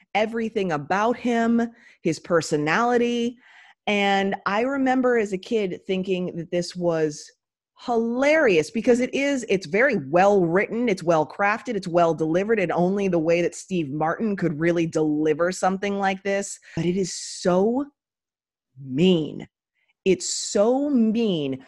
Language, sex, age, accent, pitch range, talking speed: English, female, 30-49, American, 170-230 Hz, 130 wpm